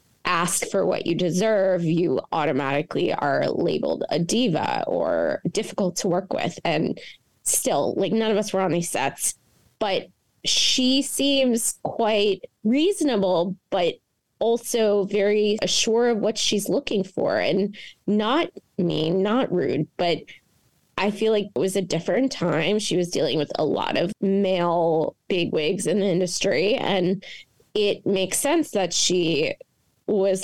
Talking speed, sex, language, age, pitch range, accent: 145 wpm, female, English, 20-39, 180-225 Hz, American